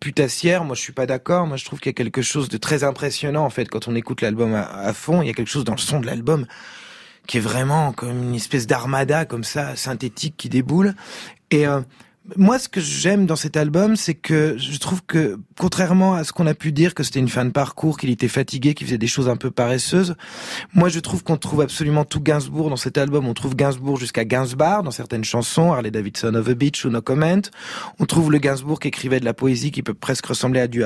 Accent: French